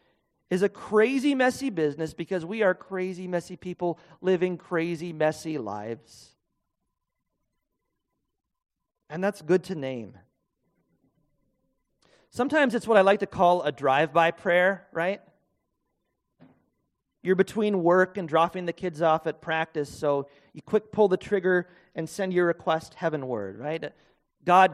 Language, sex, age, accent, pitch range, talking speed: English, male, 30-49, American, 150-190 Hz, 135 wpm